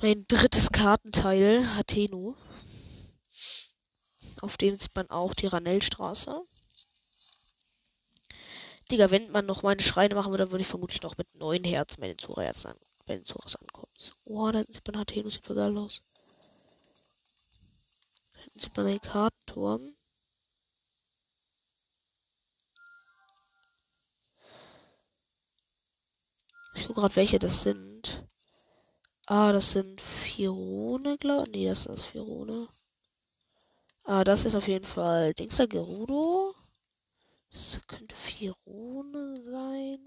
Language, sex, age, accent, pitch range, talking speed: German, female, 20-39, German, 190-235 Hz, 115 wpm